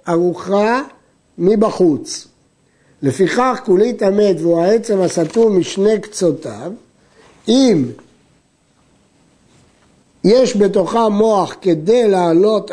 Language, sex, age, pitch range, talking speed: Hebrew, male, 60-79, 160-215 Hz, 75 wpm